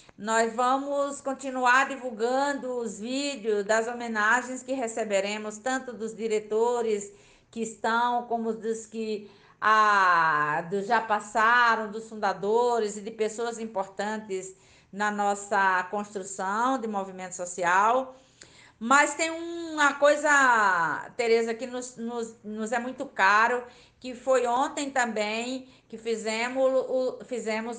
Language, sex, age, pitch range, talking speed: Portuguese, female, 50-69, 195-250 Hz, 110 wpm